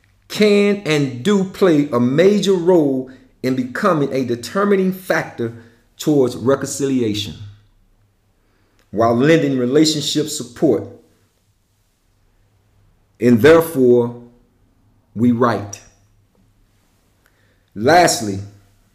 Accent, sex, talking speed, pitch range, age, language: American, male, 75 wpm, 100-150 Hz, 40-59, English